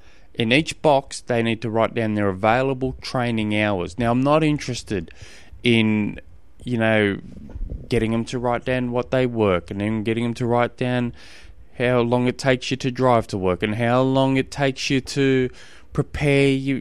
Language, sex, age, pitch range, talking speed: English, male, 20-39, 105-135 Hz, 180 wpm